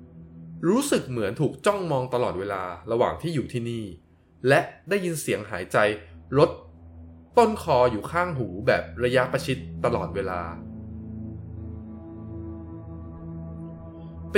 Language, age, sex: Thai, 20-39, male